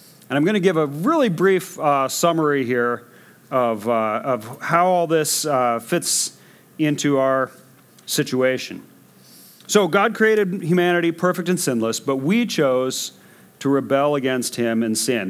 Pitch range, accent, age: 120-165 Hz, American, 40-59